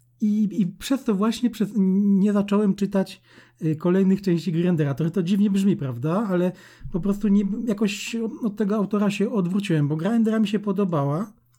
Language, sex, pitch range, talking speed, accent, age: Polish, male, 160-205 Hz, 170 wpm, native, 40-59